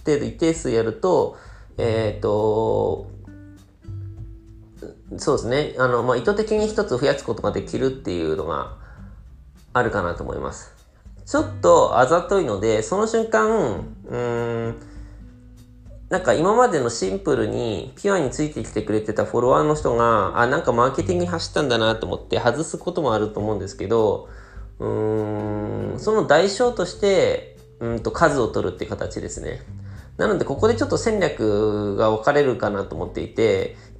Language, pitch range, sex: Japanese, 105-160 Hz, male